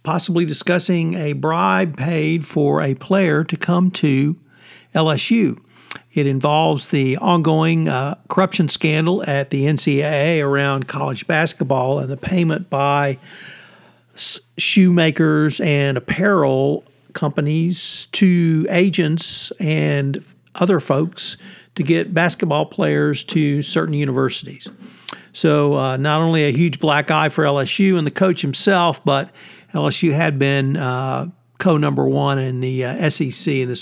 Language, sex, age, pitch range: English, male, 50-69, 140-180 Hz